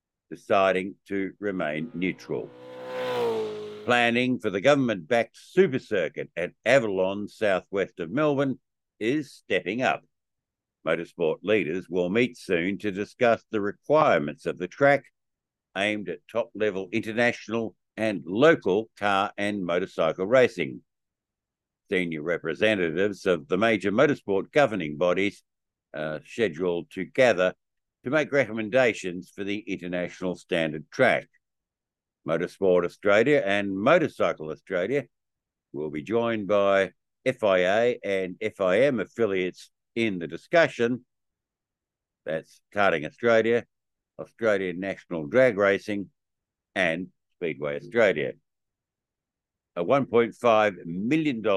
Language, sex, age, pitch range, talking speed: English, male, 60-79, 90-120 Hz, 105 wpm